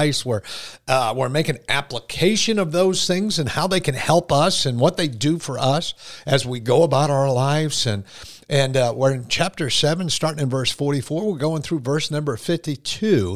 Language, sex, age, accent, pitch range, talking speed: English, male, 50-69, American, 125-170 Hz, 195 wpm